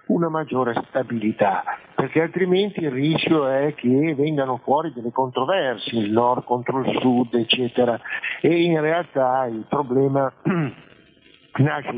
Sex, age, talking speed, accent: male, 50-69, 125 wpm, native